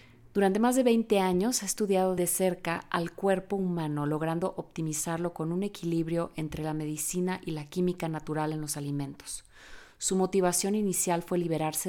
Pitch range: 155-185 Hz